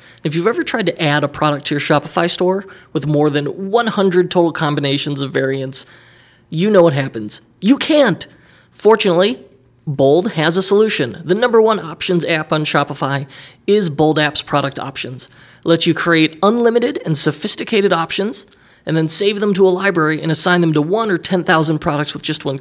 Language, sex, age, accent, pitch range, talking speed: English, male, 20-39, American, 145-180 Hz, 185 wpm